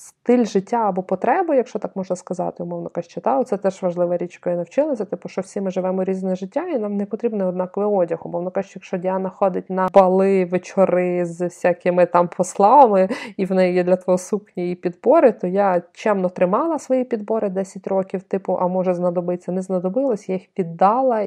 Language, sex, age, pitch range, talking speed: Ukrainian, female, 20-39, 180-215 Hz, 190 wpm